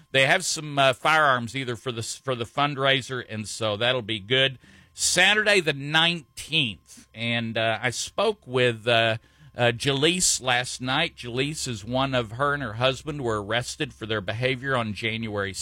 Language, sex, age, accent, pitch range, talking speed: English, male, 50-69, American, 120-165 Hz, 170 wpm